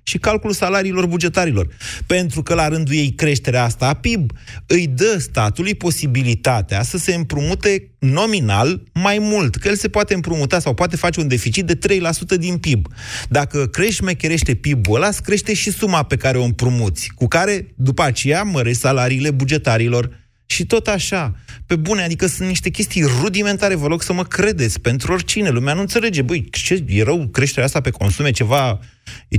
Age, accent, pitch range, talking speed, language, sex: 30-49, native, 120-180 Hz, 175 wpm, Romanian, male